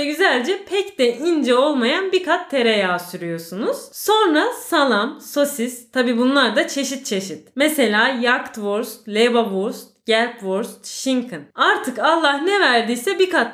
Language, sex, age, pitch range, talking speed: Turkish, female, 30-49, 220-335 Hz, 125 wpm